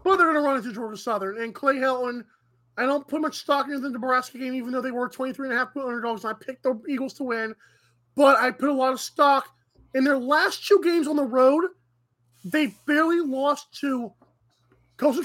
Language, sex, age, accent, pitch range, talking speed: English, male, 20-39, American, 230-295 Hz, 210 wpm